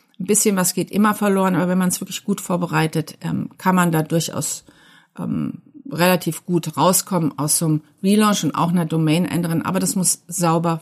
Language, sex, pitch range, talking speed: German, female, 180-225 Hz, 195 wpm